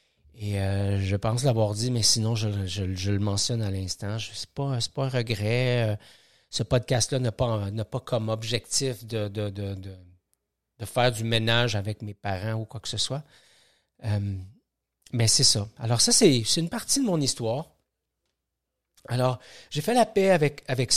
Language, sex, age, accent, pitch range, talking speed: French, male, 40-59, Canadian, 105-125 Hz, 170 wpm